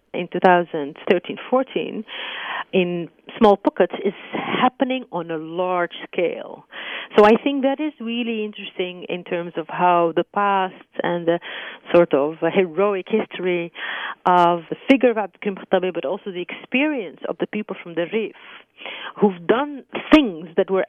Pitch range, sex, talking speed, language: 175-225 Hz, female, 145 wpm, English